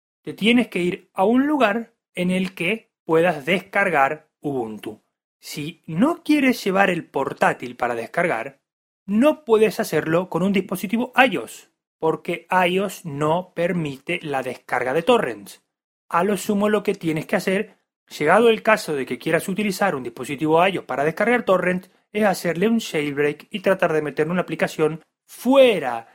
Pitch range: 165-215 Hz